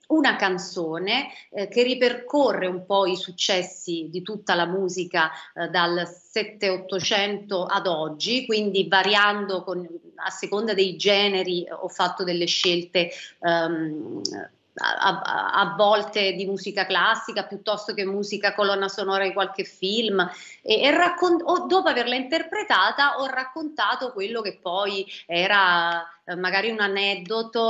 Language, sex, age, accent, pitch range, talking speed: Italian, female, 30-49, native, 180-225 Hz, 130 wpm